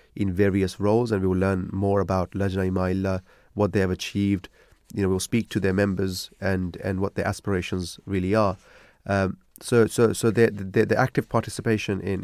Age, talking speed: 30-49, 185 wpm